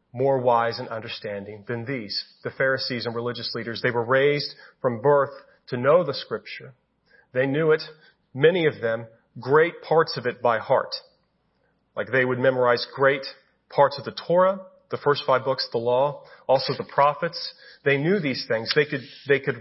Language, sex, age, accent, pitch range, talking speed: English, male, 40-59, American, 125-150 Hz, 180 wpm